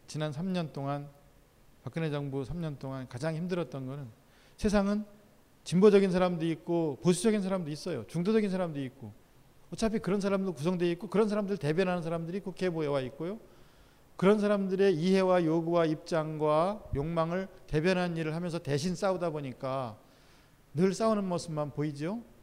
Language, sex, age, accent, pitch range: Korean, male, 40-59, native, 150-195 Hz